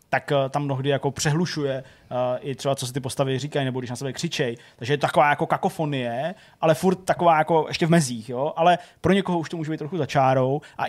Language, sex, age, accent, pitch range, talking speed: Czech, male, 20-39, native, 125-145 Hz, 230 wpm